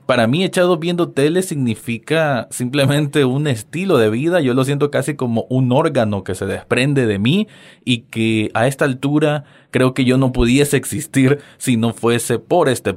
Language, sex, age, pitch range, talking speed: Spanish, male, 20-39, 105-145 Hz, 180 wpm